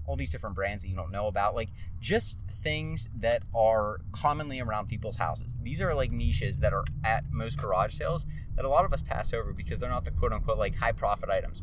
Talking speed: 220 wpm